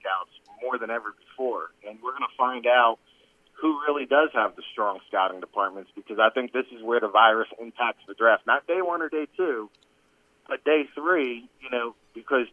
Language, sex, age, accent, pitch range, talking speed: English, male, 40-59, American, 125-150 Hz, 190 wpm